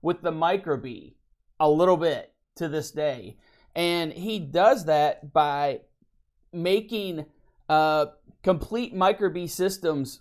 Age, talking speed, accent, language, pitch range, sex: 30-49, 110 wpm, American, English, 145-180 Hz, male